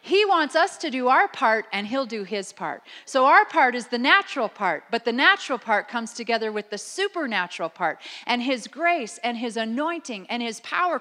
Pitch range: 200-270 Hz